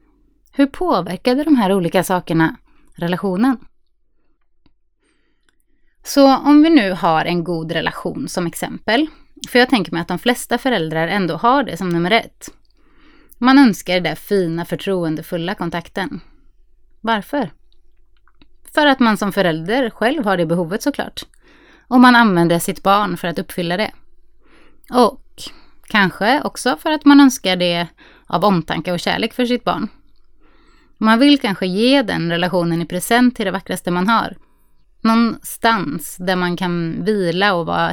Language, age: Swedish, 20-39